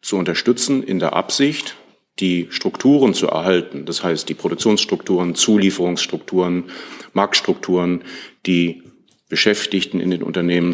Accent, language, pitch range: German, German, 85-100 Hz